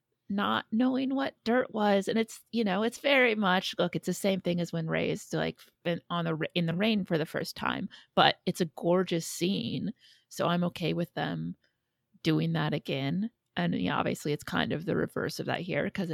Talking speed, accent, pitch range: 210 wpm, American, 160-200 Hz